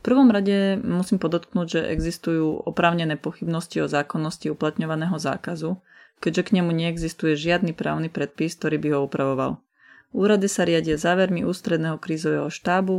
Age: 30-49